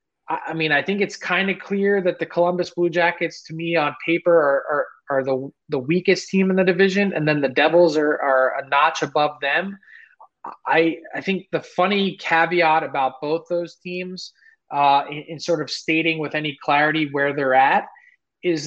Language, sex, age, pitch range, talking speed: English, male, 20-39, 145-170 Hz, 195 wpm